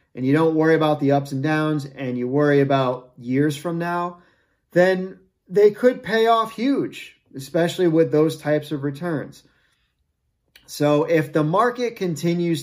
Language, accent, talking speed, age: English, American, 155 wpm, 30-49